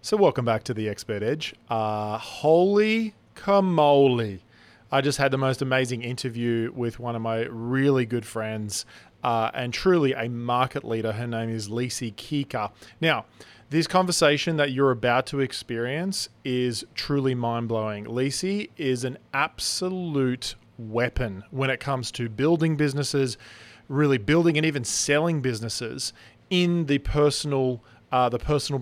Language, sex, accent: English, male, Australian